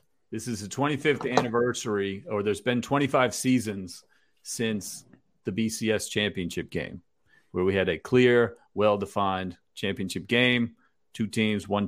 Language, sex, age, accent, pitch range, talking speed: English, male, 40-59, American, 100-130 Hz, 135 wpm